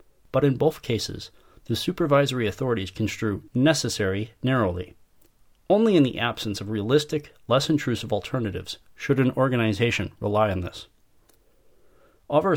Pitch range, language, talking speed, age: 105-135 Hz, English, 125 wpm, 40-59